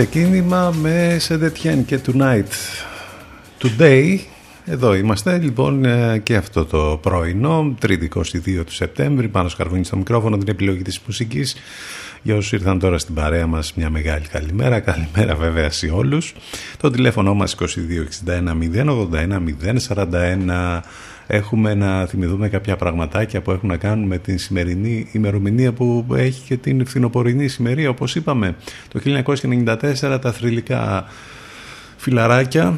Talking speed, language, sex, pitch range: 135 wpm, Greek, male, 90-125 Hz